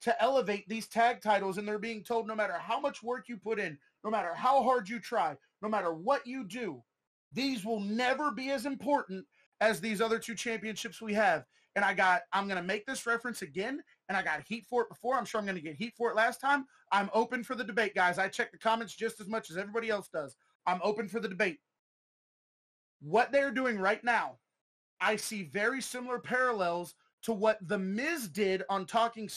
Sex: male